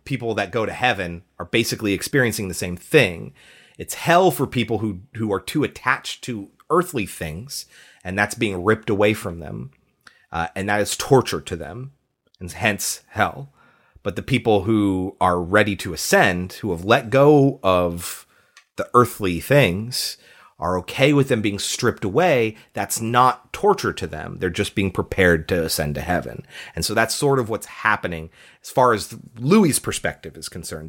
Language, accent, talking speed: English, American, 175 wpm